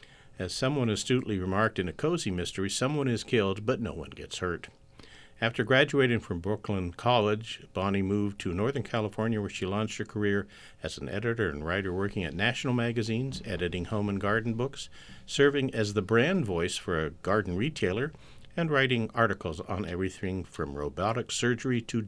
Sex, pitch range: male, 95-125 Hz